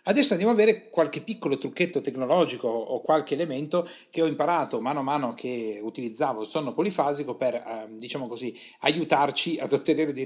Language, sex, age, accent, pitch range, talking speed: Italian, male, 40-59, native, 125-170 Hz, 170 wpm